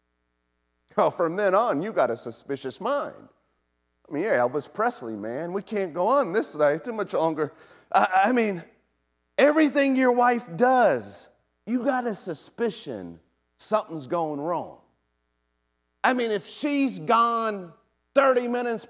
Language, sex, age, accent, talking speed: English, male, 40-59, American, 145 wpm